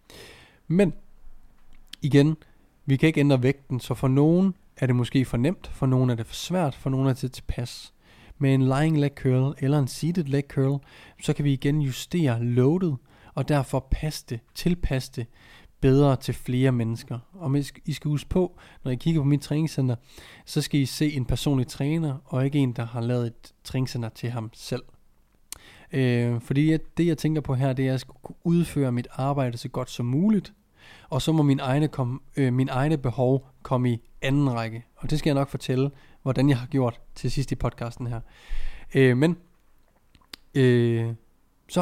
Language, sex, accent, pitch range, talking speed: Danish, male, native, 125-150 Hz, 190 wpm